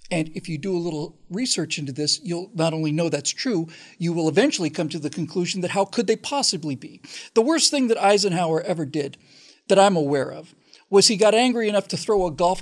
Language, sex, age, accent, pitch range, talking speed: English, male, 50-69, American, 160-195 Hz, 230 wpm